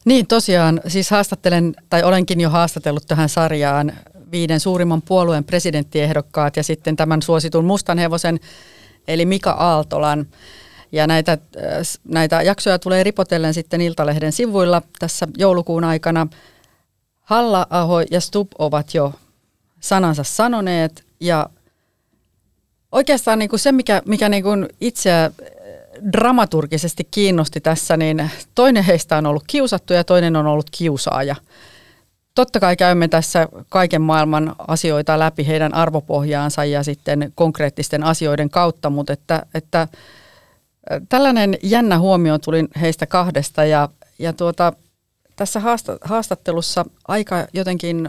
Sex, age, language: female, 40-59, Finnish